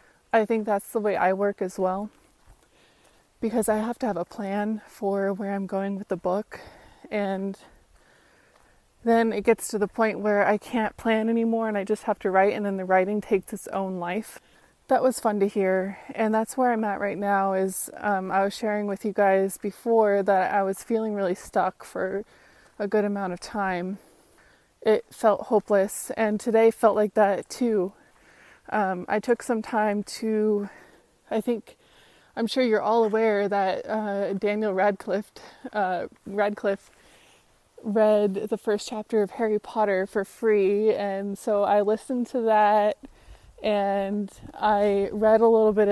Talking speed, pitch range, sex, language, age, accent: 170 wpm, 195-220 Hz, female, English, 20-39, American